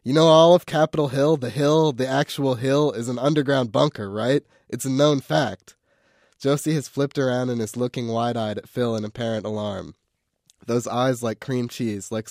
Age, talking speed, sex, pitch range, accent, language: 20-39, 190 wpm, male, 100-130 Hz, American, English